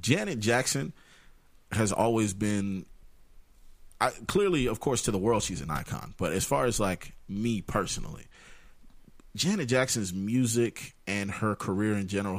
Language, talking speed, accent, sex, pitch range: English, 145 wpm, American, male, 90-105 Hz